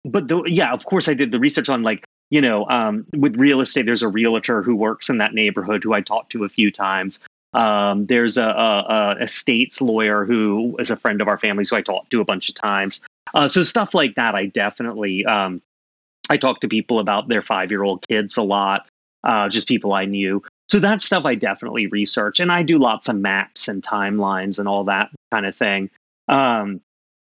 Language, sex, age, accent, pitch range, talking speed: English, male, 30-49, American, 100-145 Hz, 215 wpm